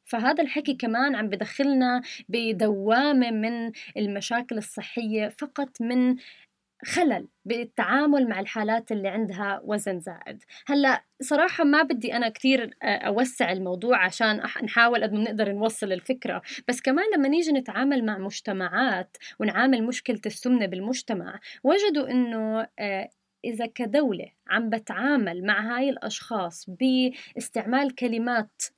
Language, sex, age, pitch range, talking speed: Arabic, female, 20-39, 210-255 Hz, 120 wpm